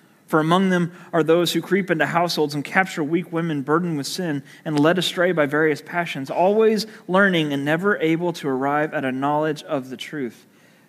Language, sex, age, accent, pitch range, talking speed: English, male, 30-49, American, 150-195 Hz, 195 wpm